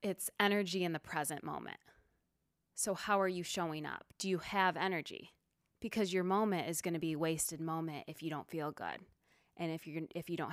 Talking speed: 210 wpm